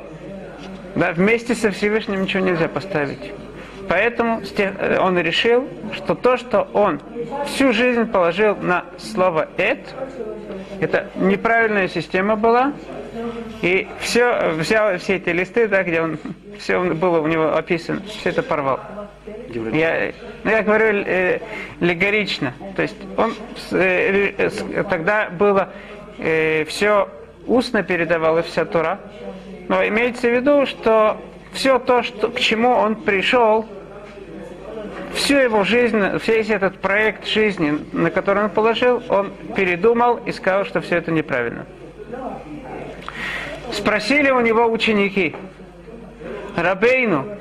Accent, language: native, Russian